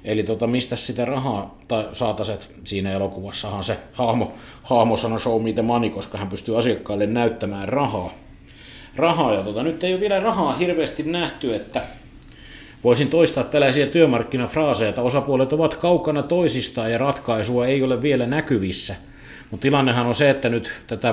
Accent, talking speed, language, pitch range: native, 150 wpm, Finnish, 105-130 Hz